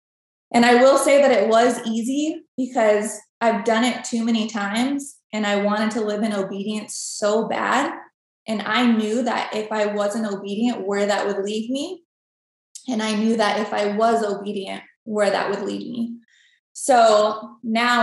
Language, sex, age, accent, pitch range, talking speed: English, female, 20-39, American, 205-240 Hz, 175 wpm